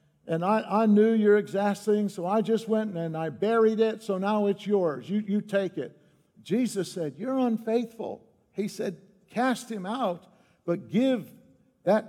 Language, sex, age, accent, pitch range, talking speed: English, male, 60-79, American, 165-220 Hz, 170 wpm